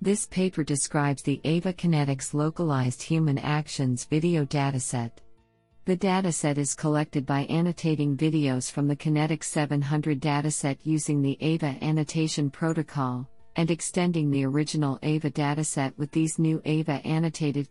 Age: 50-69